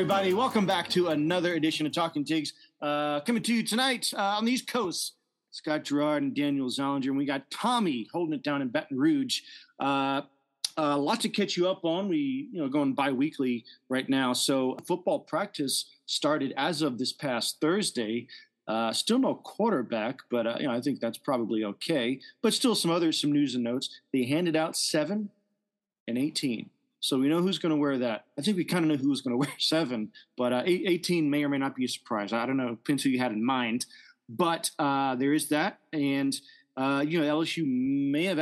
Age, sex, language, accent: 40-59, male, English, American